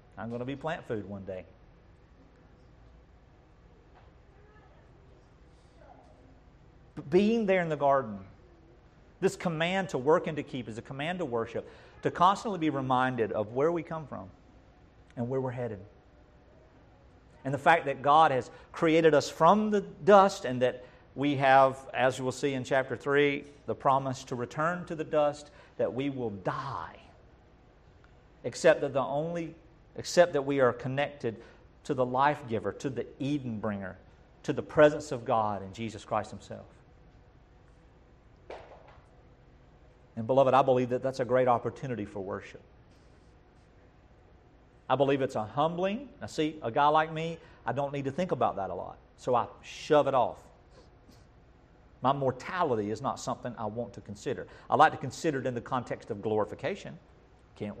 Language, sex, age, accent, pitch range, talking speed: English, male, 50-69, American, 115-155 Hz, 155 wpm